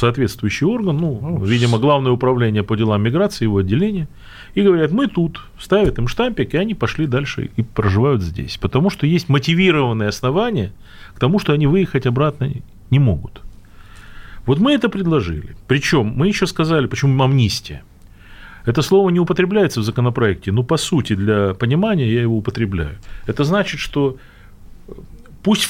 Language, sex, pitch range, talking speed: Russian, male, 105-155 Hz, 155 wpm